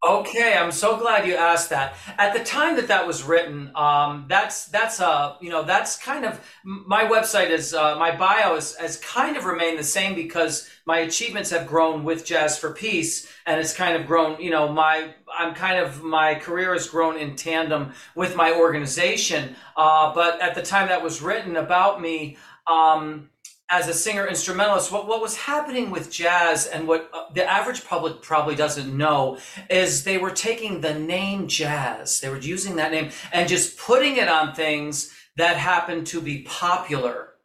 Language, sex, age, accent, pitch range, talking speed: English, male, 40-59, American, 160-205 Hz, 190 wpm